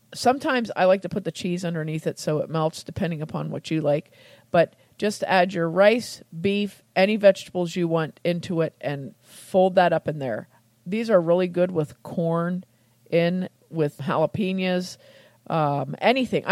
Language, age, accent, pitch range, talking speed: English, 40-59, American, 155-195 Hz, 165 wpm